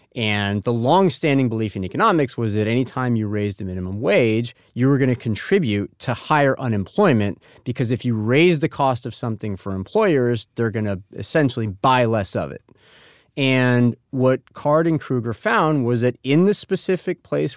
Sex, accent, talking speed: male, American, 180 wpm